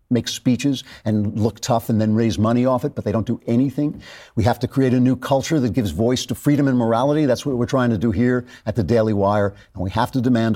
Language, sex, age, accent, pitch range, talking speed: English, male, 50-69, American, 110-140 Hz, 260 wpm